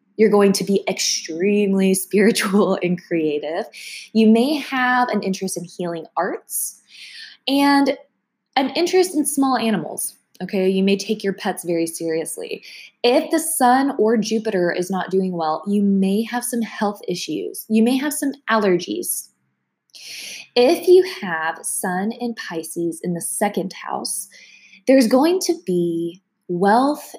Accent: American